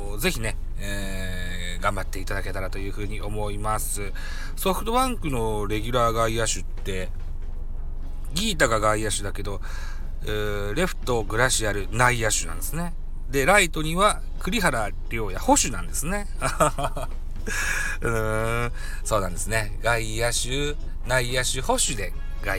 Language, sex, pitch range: Japanese, male, 90-130 Hz